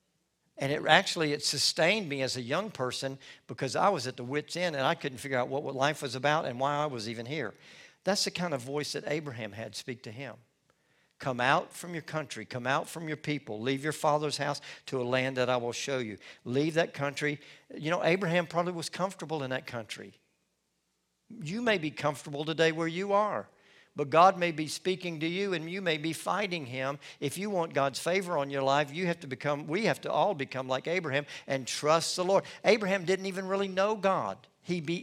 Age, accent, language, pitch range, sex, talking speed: 50-69, American, English, 135-170 Hz, male, 225 wpm